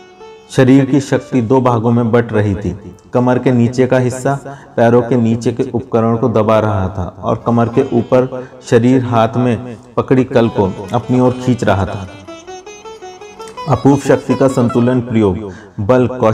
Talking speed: 75 wpm